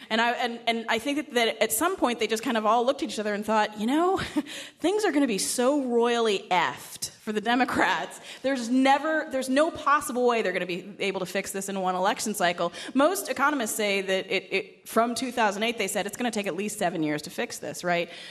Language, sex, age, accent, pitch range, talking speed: English, female, 30-49, American, 190-285 Hz, 245 wpm